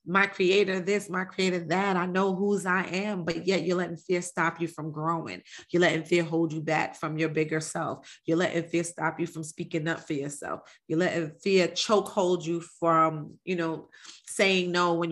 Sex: female